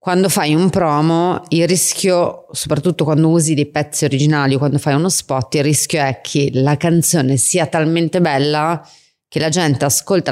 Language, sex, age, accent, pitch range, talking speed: Italian, female, 30-49, native, 140-170 Hz, 175 wpm